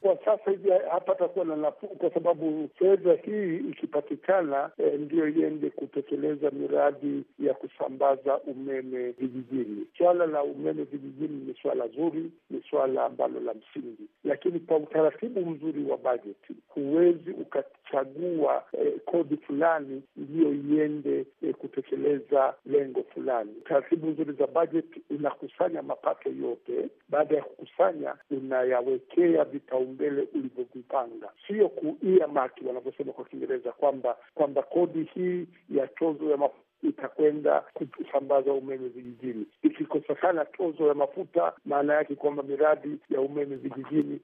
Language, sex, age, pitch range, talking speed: Swahili, male, 60-79, 140-185 Hz, 125 wpm